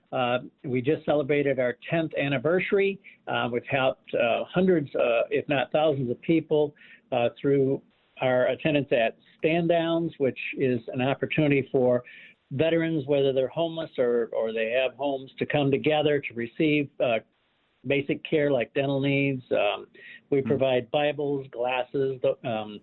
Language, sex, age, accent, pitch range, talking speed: English, male, 60-79, American, 125-155 Hz, 145 wpm